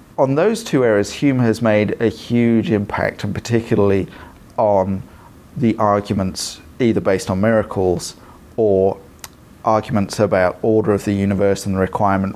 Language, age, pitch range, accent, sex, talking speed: English, 40-59, 100-125 Hz, British, male, 140 wpm